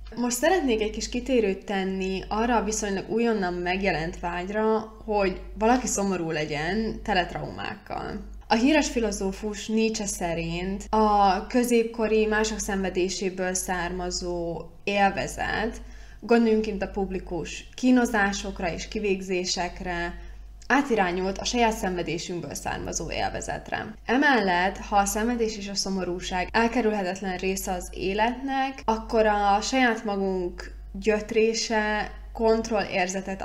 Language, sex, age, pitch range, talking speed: Hungarian, female, 20-39, 185-220 Hz, 100 wpm